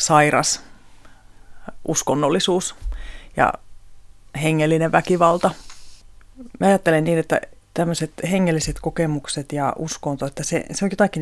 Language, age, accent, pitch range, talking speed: Finnish, 30-49, native, 145-175 Hz, 100 wpm